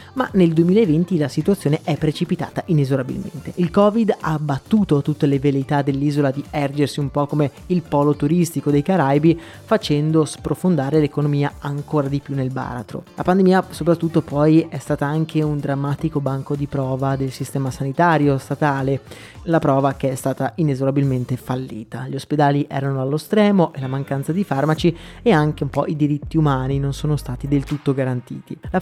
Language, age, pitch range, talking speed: Italian, 20-39, 140-175 Hz, 170 wpm